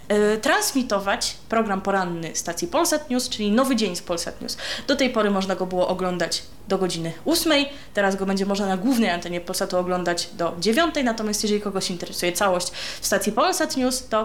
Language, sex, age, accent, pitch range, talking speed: Polish, female, 20-39, native, 185-250 Hz, 175 wpm